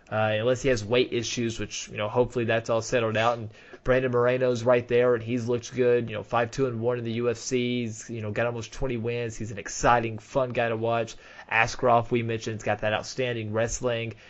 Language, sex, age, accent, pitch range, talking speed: English, male, 20-39, American, 110-125 Hz, 225 wpm